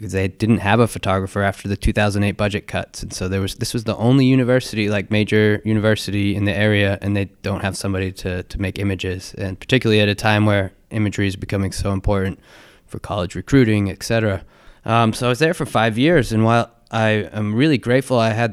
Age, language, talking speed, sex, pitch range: 20-39, English, 215 wpm, male, 100-115 Hz